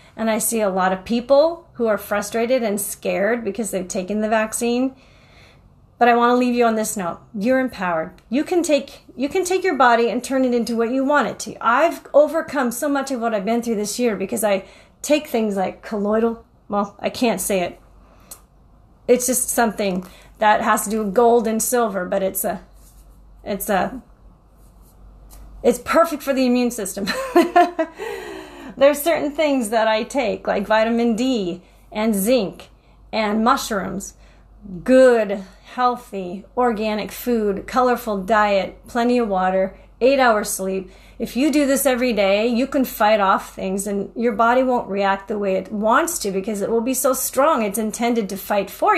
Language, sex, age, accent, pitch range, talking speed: English, female, 30-49, American, 205-260 Hz, 180 wpm